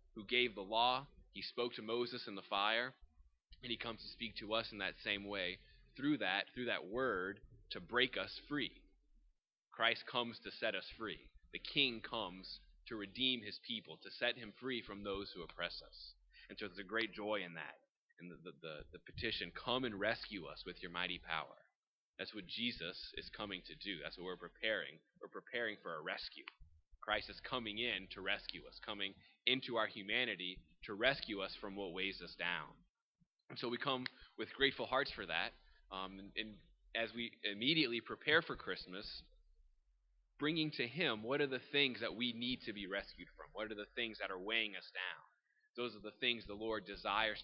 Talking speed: 200 wpm